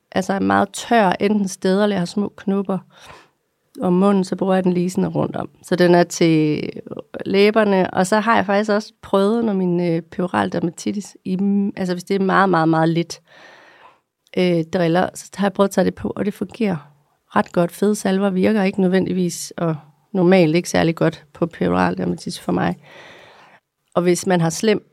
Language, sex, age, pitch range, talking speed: Danish, female, 30-49, 170-200 Hz, 190 wpm